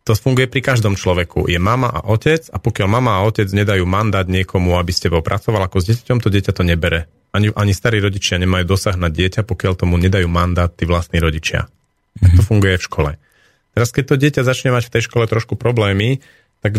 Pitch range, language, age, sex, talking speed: 90-115 Hz, Slovak, 40-59, male, 210 wpm